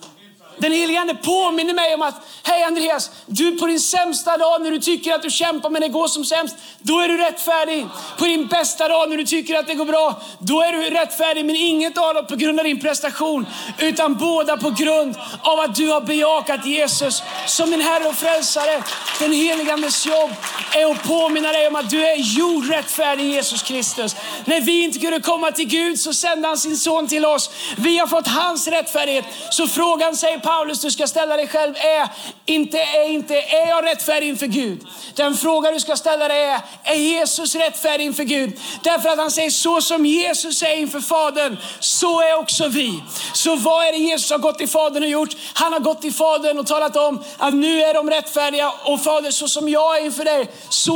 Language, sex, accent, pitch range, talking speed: Swedish, male, native, 290-320 Hz, 210 wpm